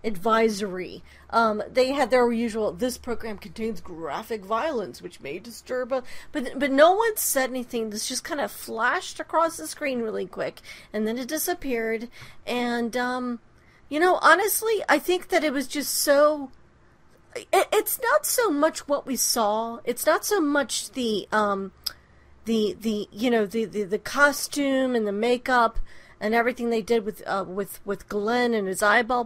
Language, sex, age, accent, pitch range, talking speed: English, female, 40-59, American, 230-315 Hz, 170 wpm